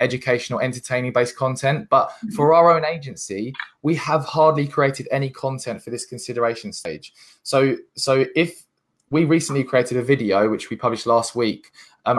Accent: British